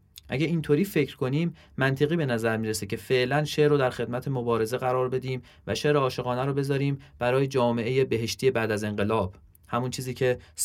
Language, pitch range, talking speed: Persian, 100-130 Hz, 175 wpm